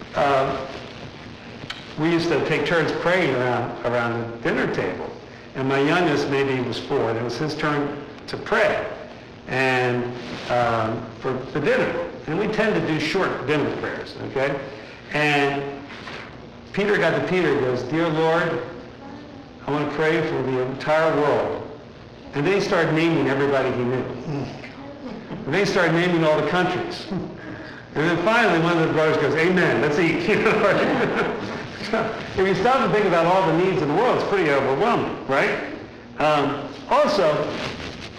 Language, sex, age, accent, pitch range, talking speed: English, male, 60-79, American, 130-165 Hz, 160 wpm